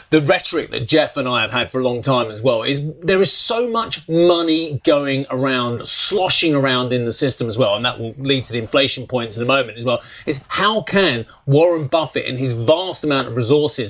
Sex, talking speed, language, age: male, 230 wpm, English, 30-49